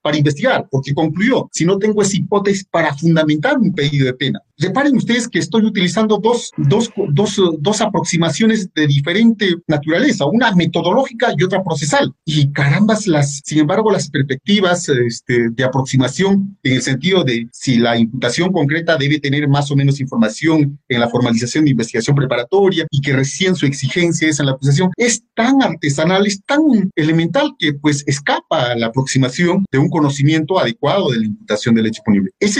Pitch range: 140-195 Hz